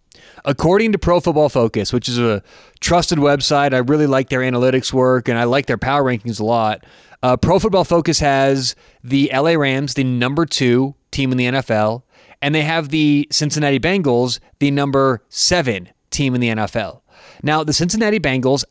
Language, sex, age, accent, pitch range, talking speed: English, male, 30-49, American, 125-165 Hz, 180 wpm